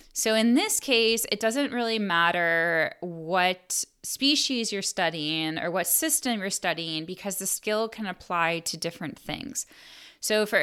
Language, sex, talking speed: English, female, 155 wpm